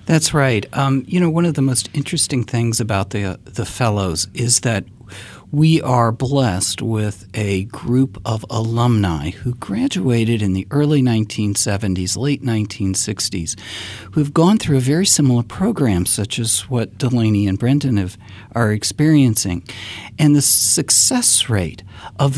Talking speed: 145 wpm